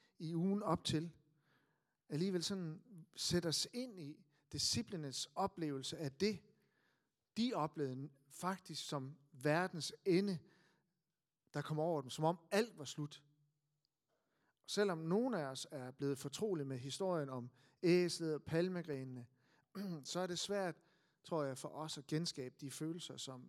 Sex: male